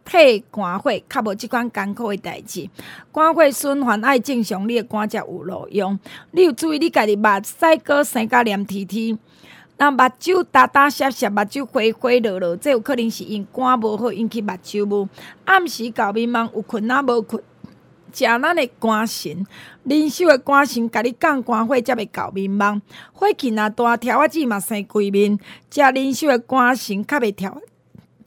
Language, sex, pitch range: Chinese, female, 205-270 Hz